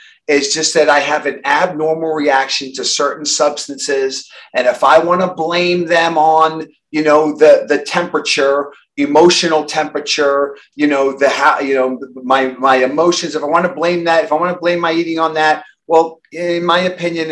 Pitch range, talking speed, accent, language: 145-180 Hz, 185 wpm, American, English